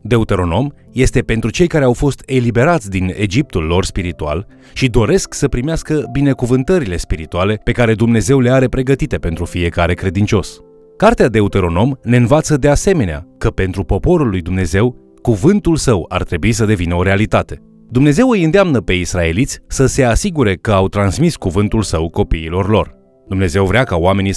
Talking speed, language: 160 wpm, Romanian